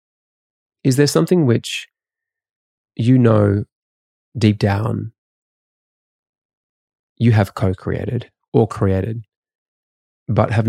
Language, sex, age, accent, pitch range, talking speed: English, male, 20-39, Australian, 95-120 Hz, 90 wpm